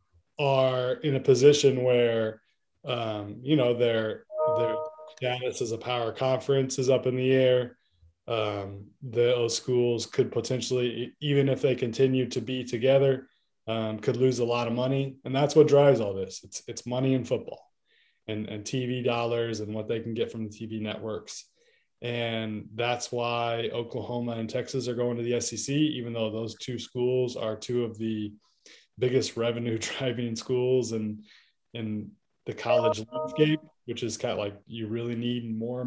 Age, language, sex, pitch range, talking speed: 20-39, English, male, 110-130 Hz, 170 wpm